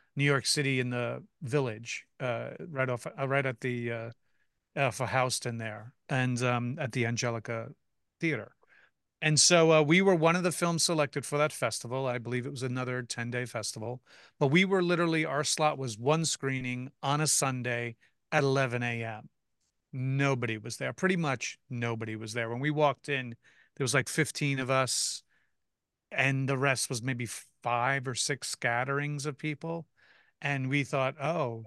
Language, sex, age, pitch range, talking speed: English, male, 40-59, 120-145 Hz, 175 wpm